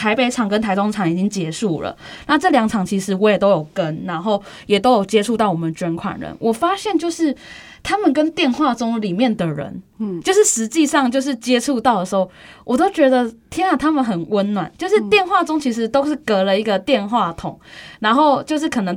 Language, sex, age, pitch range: Chinese, female, 10-29, 195-260 Hz